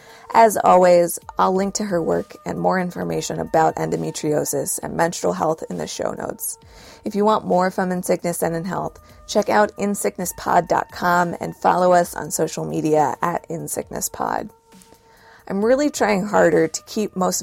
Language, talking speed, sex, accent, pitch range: English, 160 wpm, female, American, 165-225 Hz